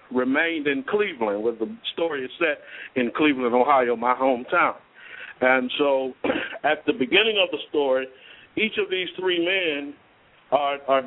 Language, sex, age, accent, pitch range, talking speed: English, male, 60-79, American, 125-160 Hz, 150 wpm